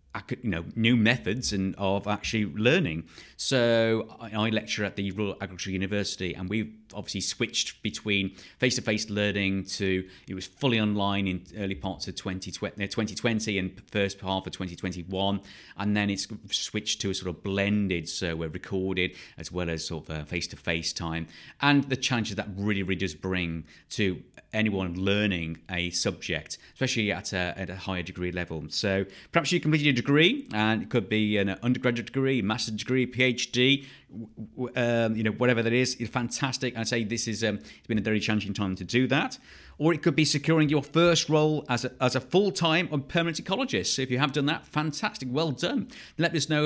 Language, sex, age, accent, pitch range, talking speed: English, male, 30-49, British, 95-135 Hz, 190 wpm